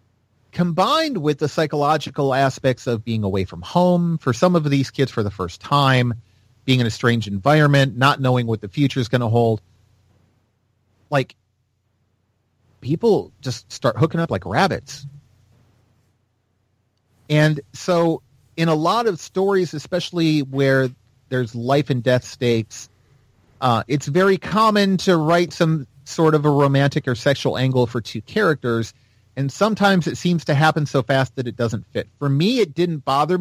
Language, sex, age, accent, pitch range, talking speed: English, male, 30-49, American, 115-155 Hz, 160 wpm